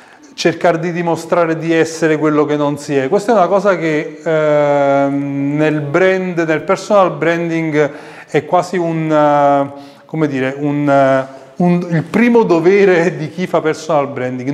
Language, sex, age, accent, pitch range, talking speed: Italian, male, 30-49, native, 145-185 Hz, 155 wpm